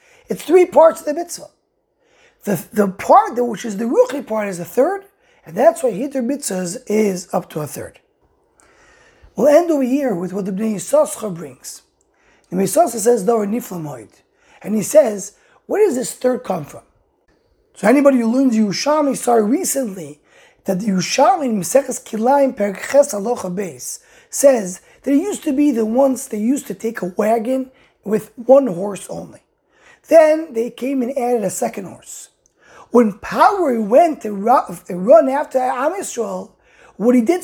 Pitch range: 220-320 Hz